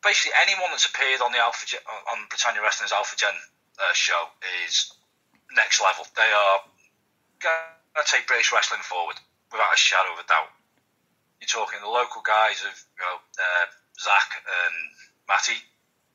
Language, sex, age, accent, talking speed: English, male, 30-49, British, 165 wpm